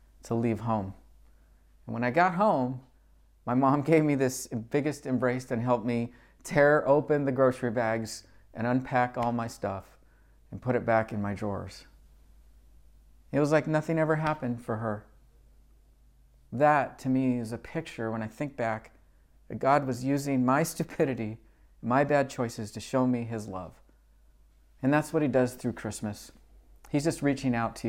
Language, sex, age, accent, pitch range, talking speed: English, male, 40-59, American, 110-145 Hz, 170 wpm